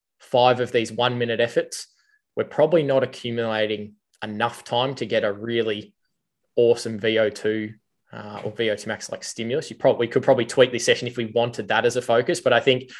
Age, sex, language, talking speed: 20-39, male, English, 190 wpm